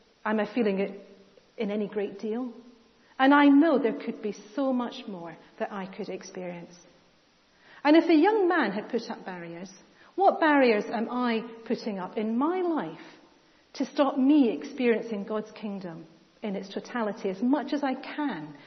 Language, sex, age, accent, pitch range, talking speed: English, female, 40-59, British, 200-265 Hz, 170 wpm